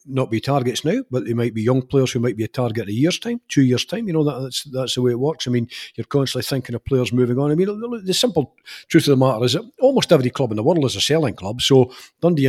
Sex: male